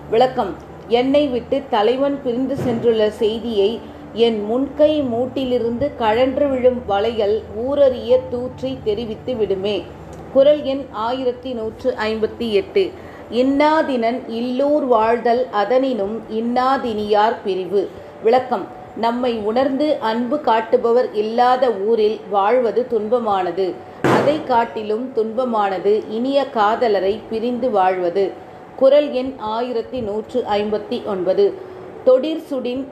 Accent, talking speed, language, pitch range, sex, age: native, 85 wpm, Tamil, 215-260 Hz, female, 30-49